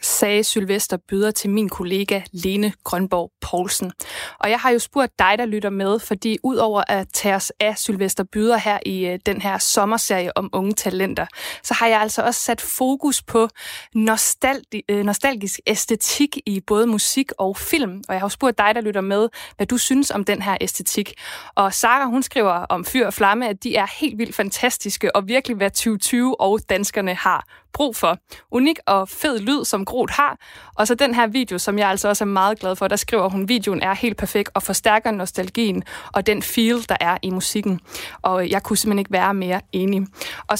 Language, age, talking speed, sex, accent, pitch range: Danish, 20-39, 200 wpm, female, native, 195-235 Hz